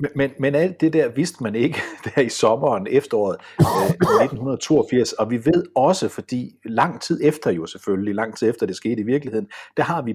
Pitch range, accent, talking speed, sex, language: 110-180 Hz, native, 205 wpm, male, Danish